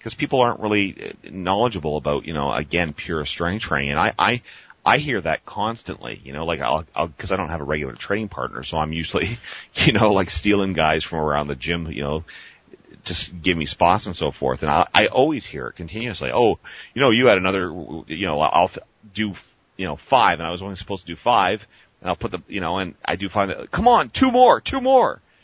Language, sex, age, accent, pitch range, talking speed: English, male, 40-59, American, 80-100 Hz, 235 wpm